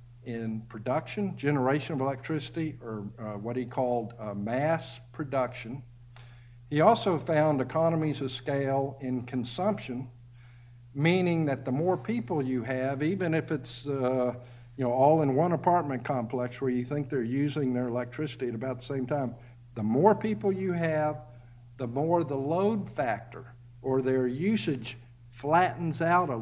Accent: American